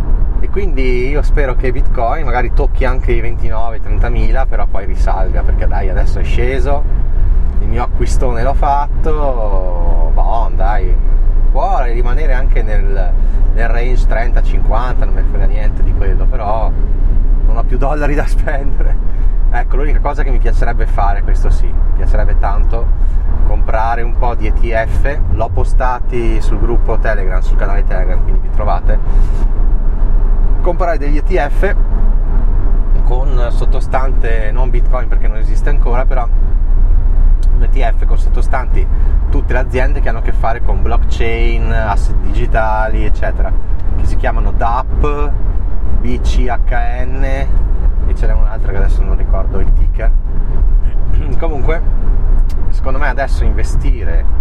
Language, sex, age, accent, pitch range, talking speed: Italian, male, 20-39, native, 75-110 Hz, 135 wpm